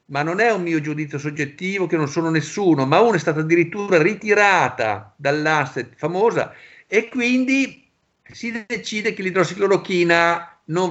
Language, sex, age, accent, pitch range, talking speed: Italian, male, 50-69, native, 145-195 Hz, 145 wpm